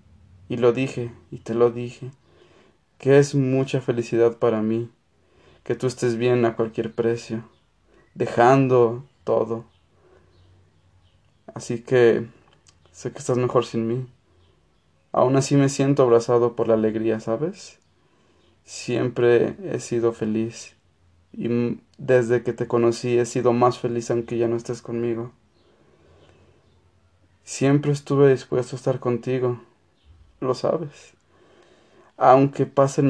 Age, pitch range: 20-39, 115-125 Hz